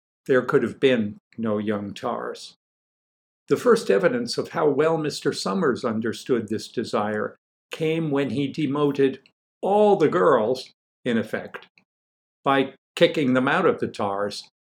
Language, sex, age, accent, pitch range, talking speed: English, male, 50-69, American, 105-145 Hz, 140 wpm